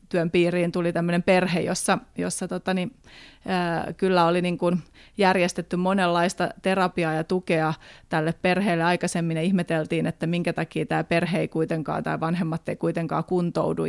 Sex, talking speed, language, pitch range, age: female, 145 wpm, Finnish, 160-175 Hz, 30-49